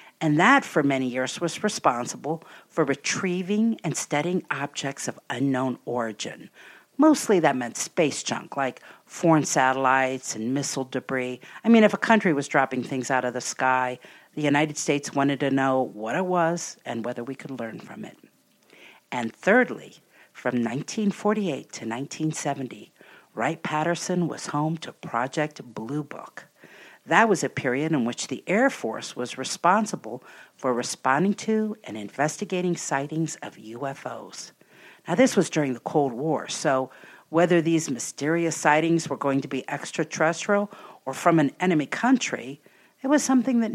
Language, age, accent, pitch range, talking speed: English, 50-69, American, 135-180 Hz, 155 wpm